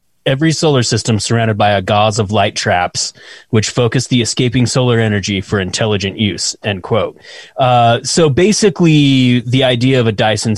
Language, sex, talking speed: English, male, 165 wpm